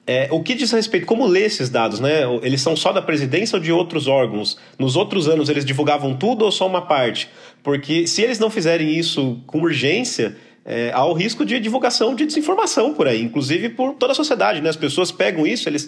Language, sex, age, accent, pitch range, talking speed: Portuguese, male, 40-59, Brazilian, 145-185 Hz, 225 wpm